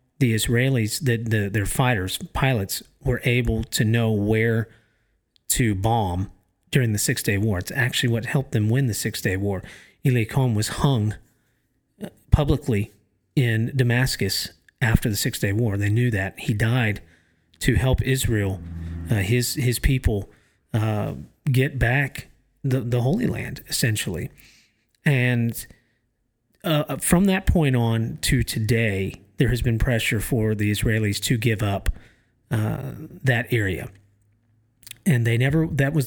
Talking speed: 140 wpm